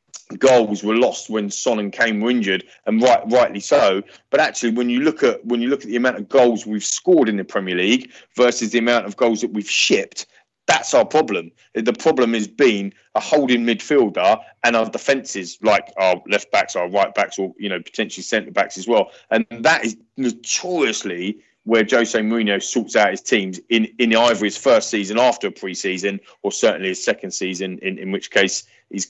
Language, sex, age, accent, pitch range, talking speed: English, male, 30-49, British, 105-130 Hz, 200 wpm